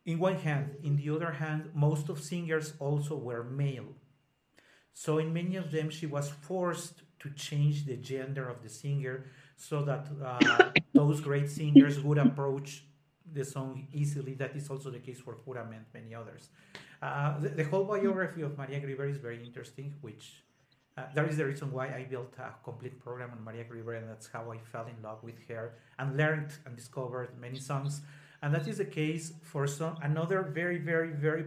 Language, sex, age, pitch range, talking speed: English, male, 40-59, 130-150 Hz, 190 wpm